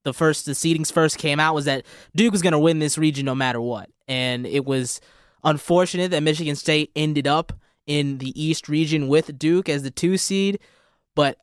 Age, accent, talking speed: 20-39, American, 200 wpm